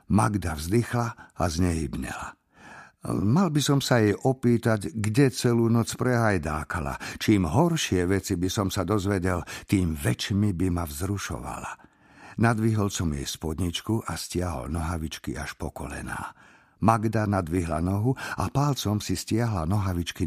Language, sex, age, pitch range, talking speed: Slovak, male, 50-69, 85-120 Hz, 130 wpm